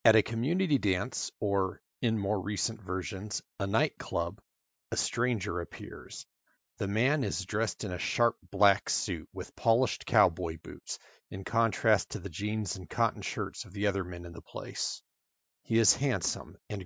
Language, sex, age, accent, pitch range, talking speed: English, male, 40-59, American, 95-115 Hz, 165 wpm